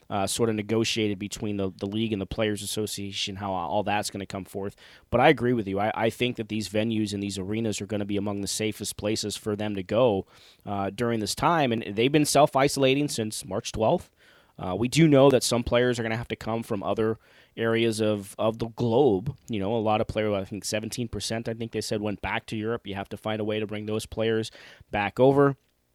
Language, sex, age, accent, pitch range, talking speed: English, male, 20-39, American, 105-115 Hz, 245 wpm